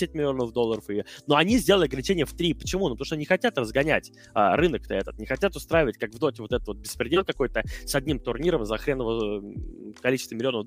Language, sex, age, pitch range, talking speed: Russian, male, 20-39, 130-180 Hz, 210 wpm